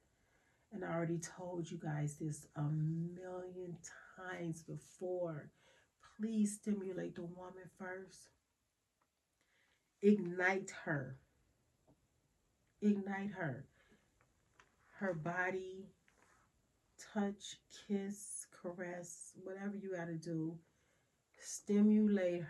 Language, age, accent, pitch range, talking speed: English, 30-49, American, 160-200 Hz, 85 wpm